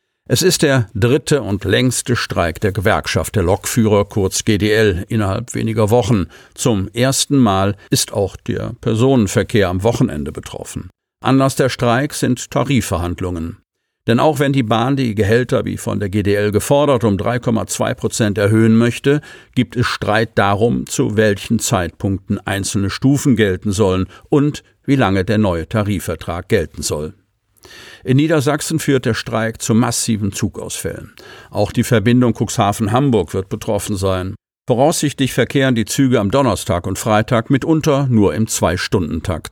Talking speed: 145 wpm